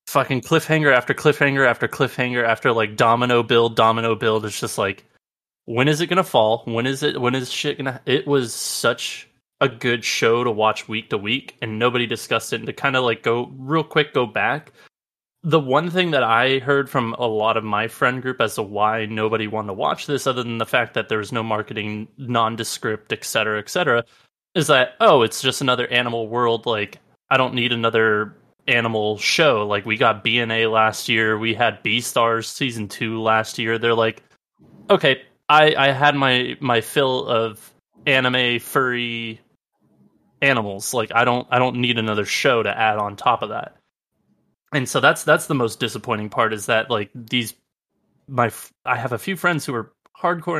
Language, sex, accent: English, male, American